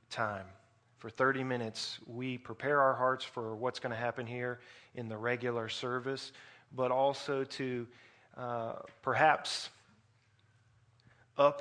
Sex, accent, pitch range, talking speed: male, American, 115-130 Hz, 125 wpm